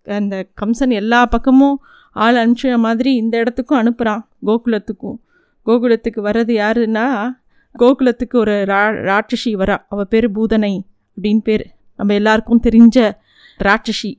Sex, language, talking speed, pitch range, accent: female, Tamil, 120 wpm, 220-275 Hz, native